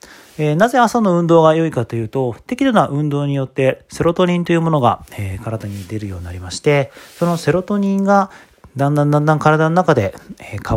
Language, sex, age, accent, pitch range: Japanese, male, 40-59, native, 105-165 Hz